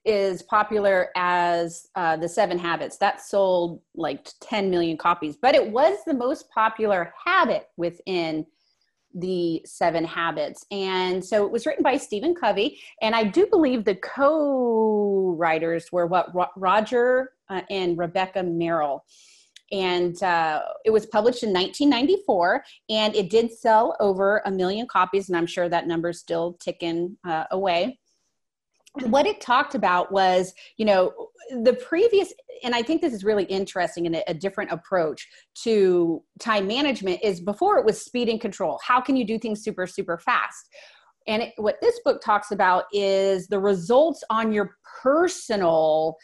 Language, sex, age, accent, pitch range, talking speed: English, female, 30-49, American, 175-230 Hz, 155 wpm